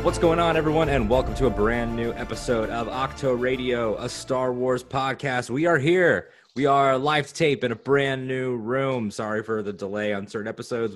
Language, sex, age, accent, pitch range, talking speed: English, male, 20-39, American, 100-130 Hz, 205 wpm